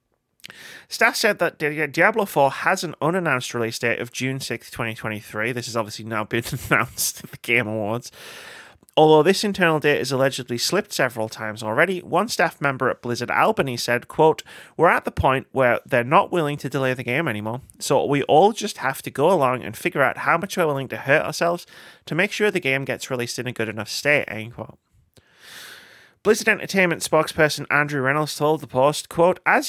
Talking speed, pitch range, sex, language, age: 195 wpm, 120-170 Hz, male, English, 30-49